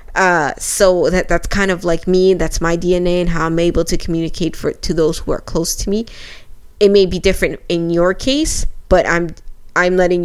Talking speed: 205 wpm